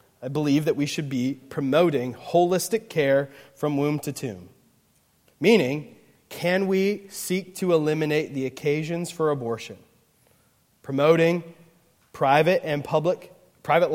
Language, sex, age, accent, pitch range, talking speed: English, male, 20-39, American, 140-170 Hz, 120 wpm